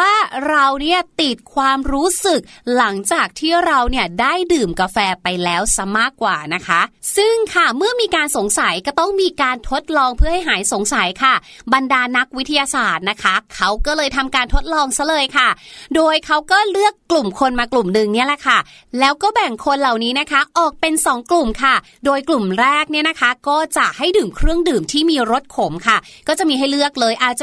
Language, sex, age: Thai, female, 30-49